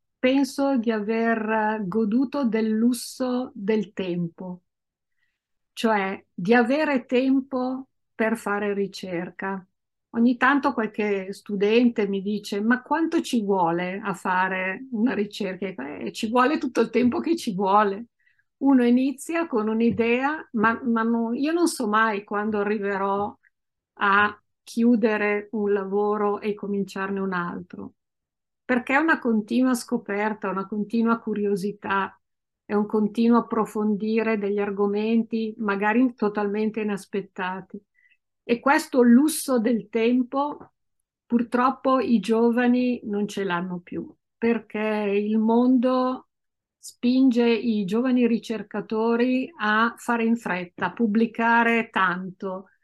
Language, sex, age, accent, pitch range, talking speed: Italian, female, 50-69, native, 205-245 Hz, 115 wpm